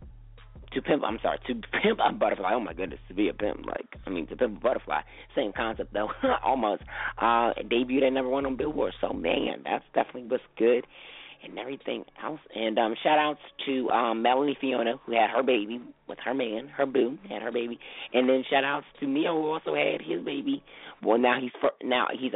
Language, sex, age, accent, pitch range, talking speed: English, male, 30-49, American, 105-130 Hz, 210 wpm